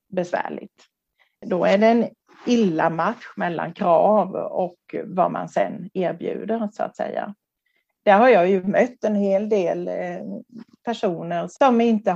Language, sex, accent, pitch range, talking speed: Swedish, female, native, 160-220 Hz, 140 wpm